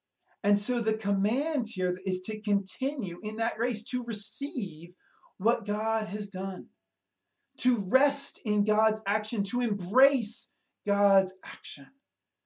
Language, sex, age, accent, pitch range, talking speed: English, male, 30-49, American, 185-230 Hz, 125 wpm